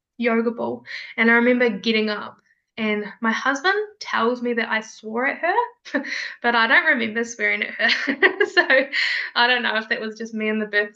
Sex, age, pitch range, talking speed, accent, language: female, 10-29, 210-240 Hz, 195 wpm, Australian, English